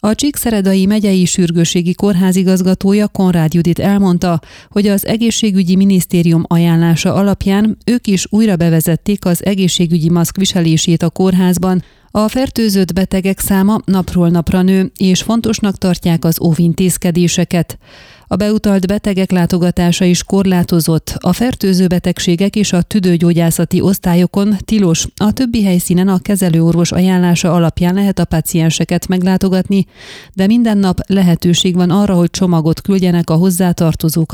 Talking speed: 130 wpm